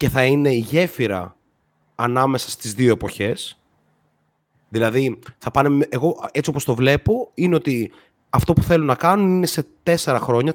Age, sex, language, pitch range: 30-49, male, Greek, 110-155 Hz